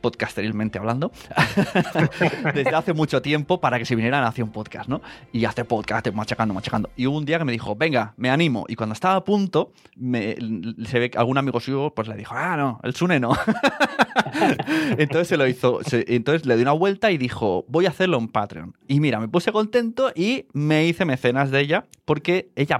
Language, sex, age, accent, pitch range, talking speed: Spanish, male, 20-39, Spanish, 115-160 Hz, 210 wpm